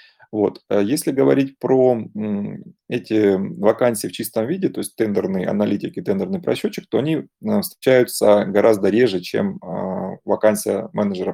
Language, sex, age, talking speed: Russian, male, 20-39, 120 wpm